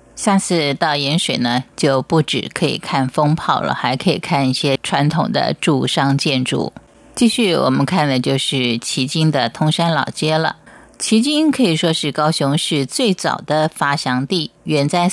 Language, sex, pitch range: Chinese, female, 145-195 Hz